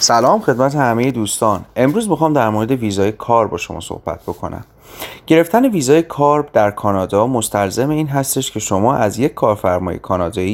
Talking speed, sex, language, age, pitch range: 160 wpm, male, Persian, 30-49, 100-125 Hz